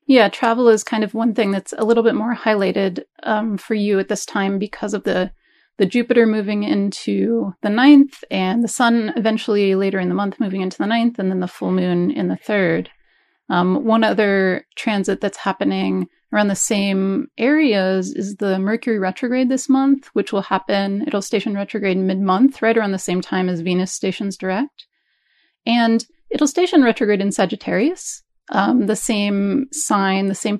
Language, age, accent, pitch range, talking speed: English, 30-49, American, 195-240 Hz, 180 wpm